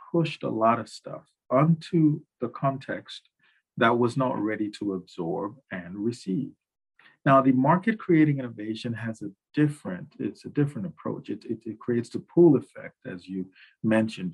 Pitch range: 110-155 Hz